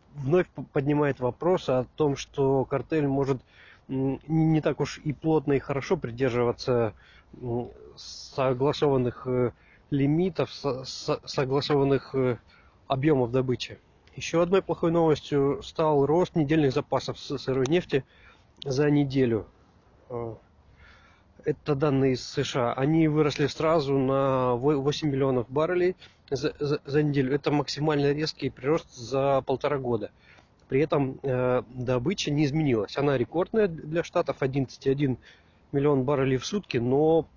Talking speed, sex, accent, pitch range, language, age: 115 wpm, male, native, 125-150 Hz, Russian, 20-39